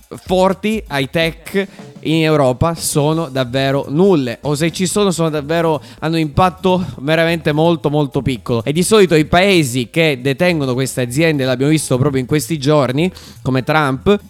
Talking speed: 155 wpm